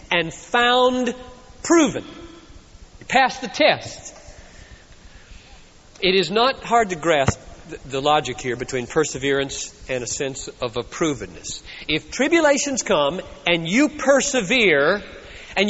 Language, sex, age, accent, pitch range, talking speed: English, male, 40-59, American, 220-320 Hz, 115 wpm